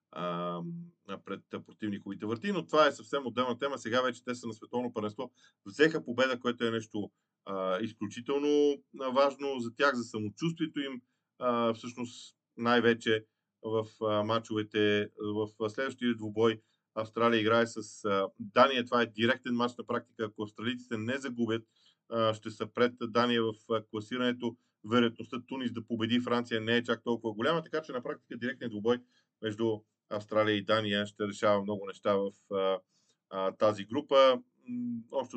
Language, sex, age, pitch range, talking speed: Bulgarian, male, 40-59, 110-125 Hz, 160 wpm